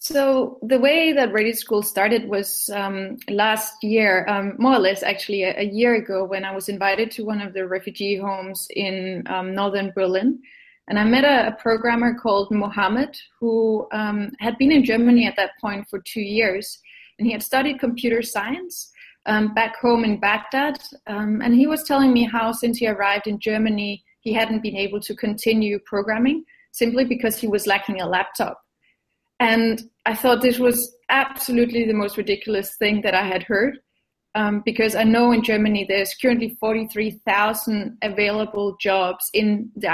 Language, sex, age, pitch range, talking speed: English, female, 20-39, 205-235 Hz, 175 wpm